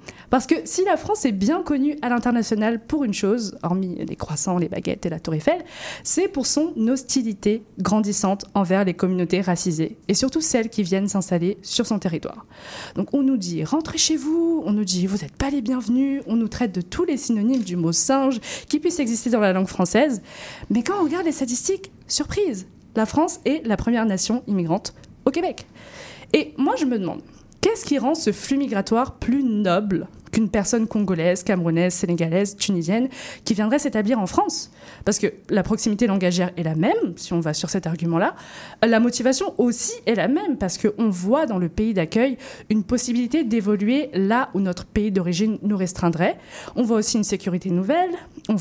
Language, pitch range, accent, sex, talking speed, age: French, 190-270 Hz, French, female, 200 wpm, 20-39